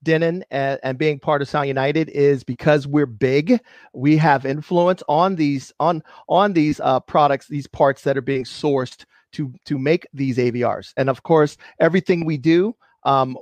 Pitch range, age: 145-185 Hz, 40-59